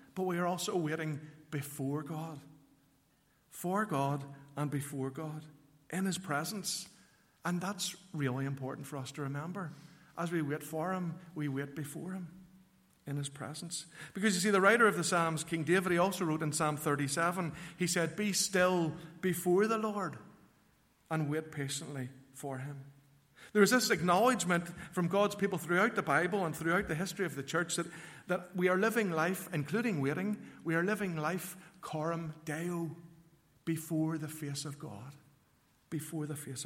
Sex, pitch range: male, 150-180 Hz